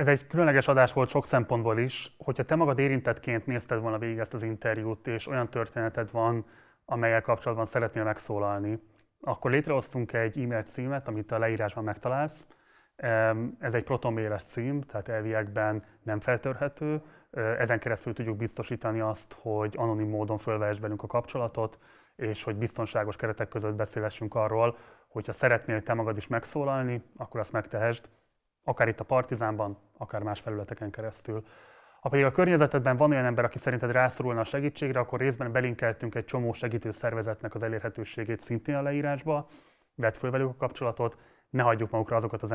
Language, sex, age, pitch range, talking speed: Hungarian, male, 30-49, 110-125 Hz, 160 wpm